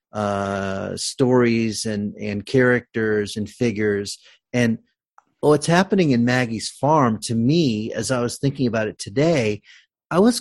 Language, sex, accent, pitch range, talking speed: English, male, American, 115-165 Hz, 140 wpm